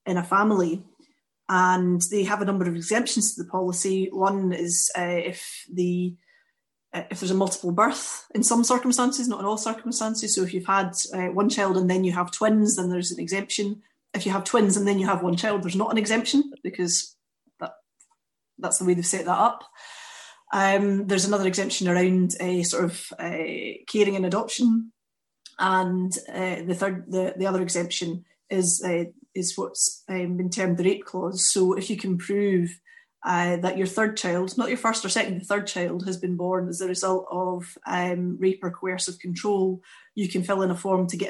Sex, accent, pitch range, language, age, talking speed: female, British, 180-205 Hz, English, 30-49, 200 wpm